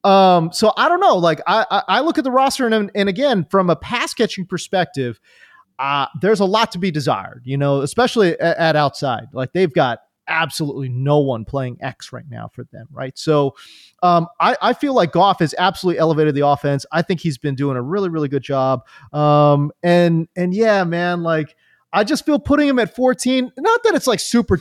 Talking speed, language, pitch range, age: 210 wpm, English, 145-215 Hz, 30-49